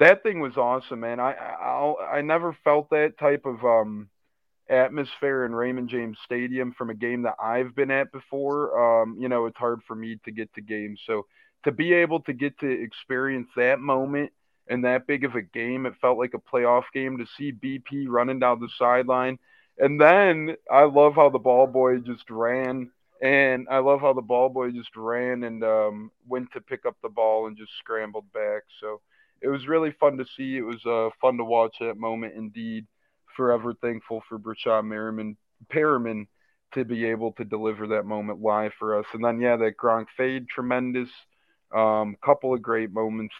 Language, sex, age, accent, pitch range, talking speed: English, male, 20-39, American, 115-140 Hz, 200 wpm